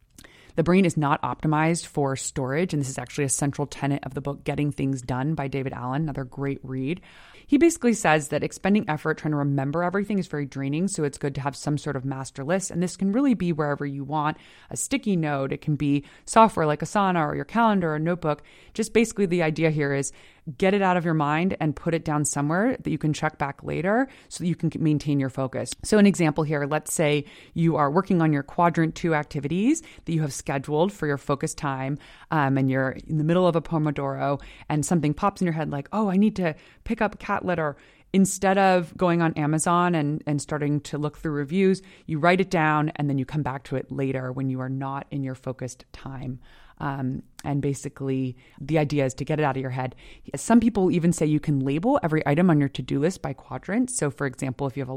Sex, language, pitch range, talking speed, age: female, English, 140-175 Hz, 235 wpm, 20-39